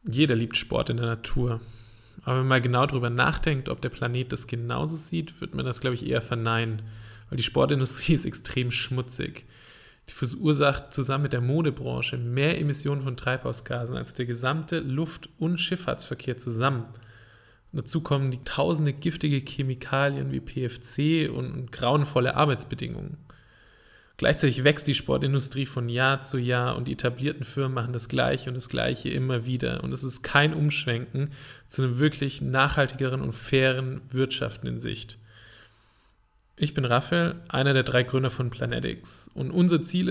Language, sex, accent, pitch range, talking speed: German, male, German, 120-150 Hz, 160 wpm